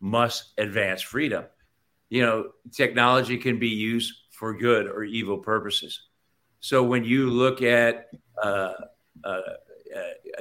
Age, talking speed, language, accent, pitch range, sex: 50-69, 115 wpm, English, American, 110-130 Hz, male